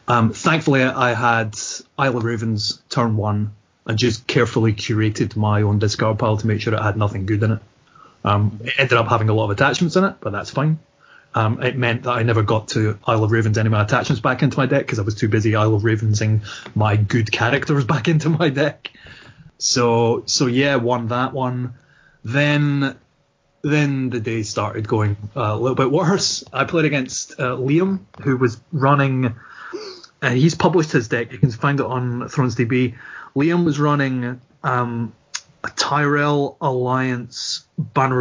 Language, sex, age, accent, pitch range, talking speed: English, male, 30-49, British, 110-140 Hz, 185 wpm